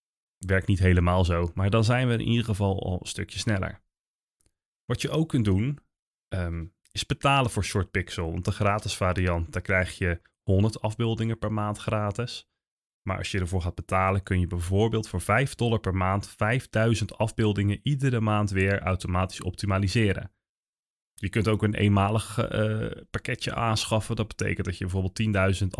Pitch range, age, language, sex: 95-120 Hz, 20-39, Dutch, male